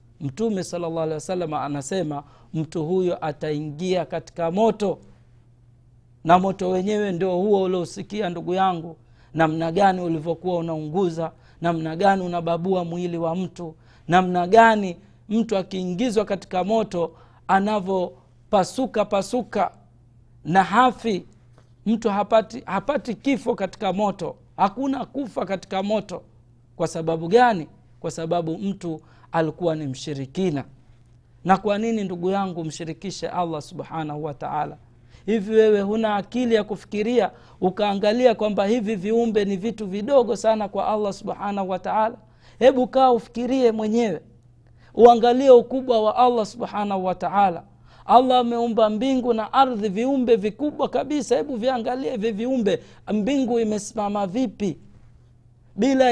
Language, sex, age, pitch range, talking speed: Swahili, male, 50-69, 160-225 Hz, 120 wpm